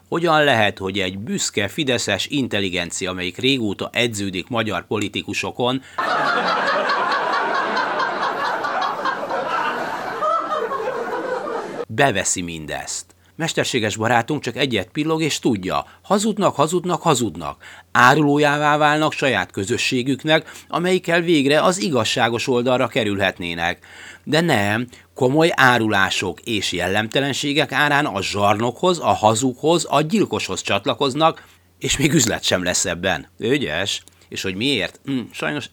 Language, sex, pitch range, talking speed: Hungarian, male, 95-145 Hz, 100 wpm